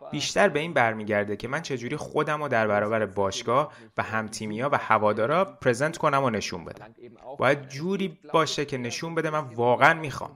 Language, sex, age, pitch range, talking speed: Persian, male, 30-49, 110-150 Hz, 185 wpm